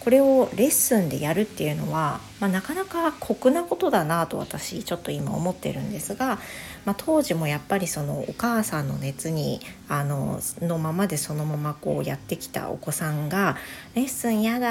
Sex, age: female, 40-59